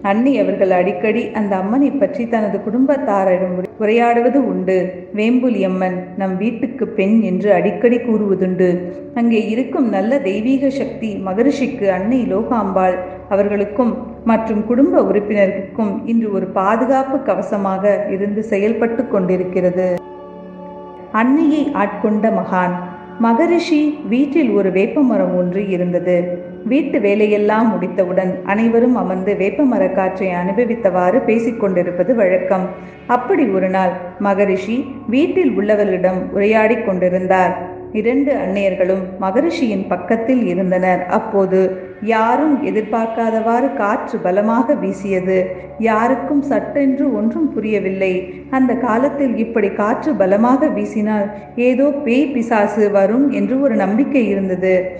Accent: native